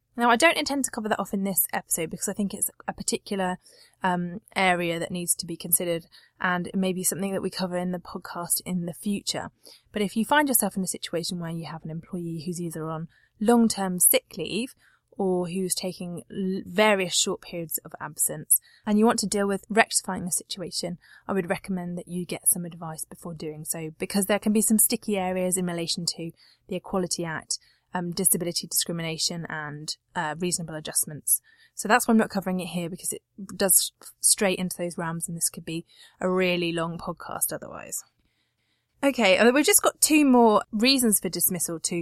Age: 20-39